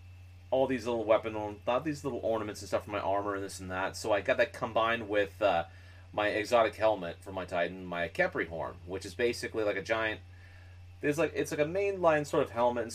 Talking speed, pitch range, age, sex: 225 wpm, 90-110 Hz, 30-49, male